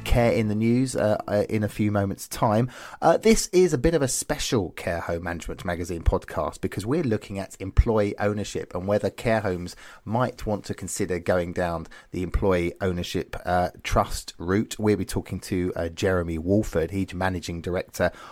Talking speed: 185 wpm